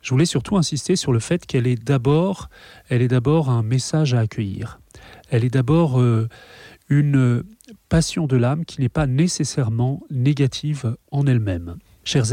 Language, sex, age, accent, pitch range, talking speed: French, male, 30-49, French, 115-140 Hz, 155 wpm